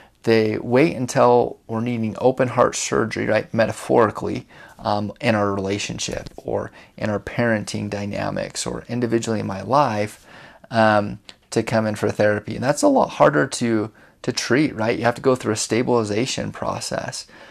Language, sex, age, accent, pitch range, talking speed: English, male, 30-49, American, 105-125 Hz, 160 wpm